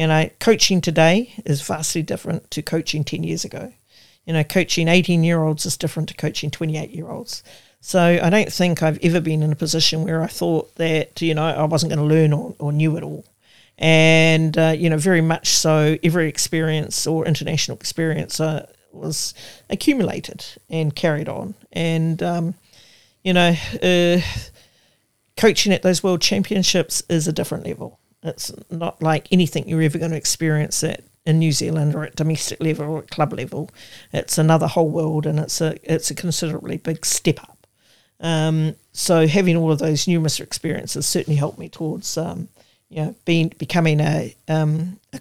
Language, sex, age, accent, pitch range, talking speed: English, male, 50-69, Australian, 155-175 Hz, 175 wpm